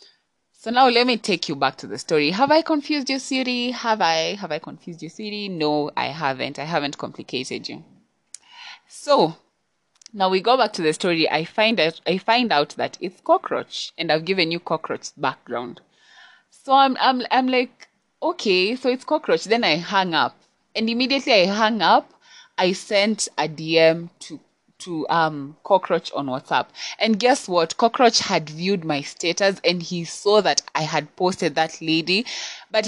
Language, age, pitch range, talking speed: English, 20-39, 160-225 Hz, 180 wpm